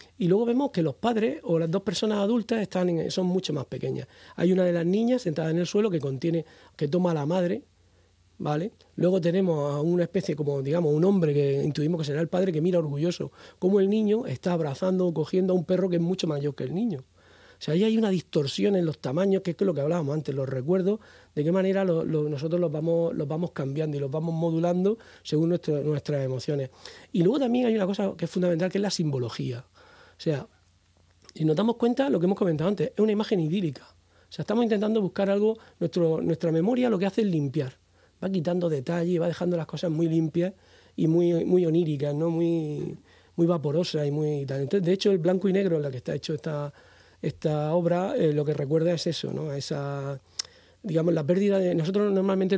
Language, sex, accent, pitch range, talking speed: Spanish, male, Spanish, 150-185 Hz, 225 wpm